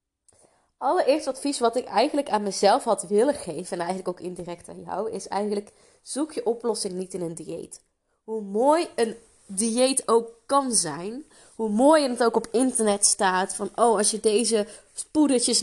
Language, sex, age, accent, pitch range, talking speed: Dutch, female, 20-39, Dutch, 200-245 Hz, 175 wpm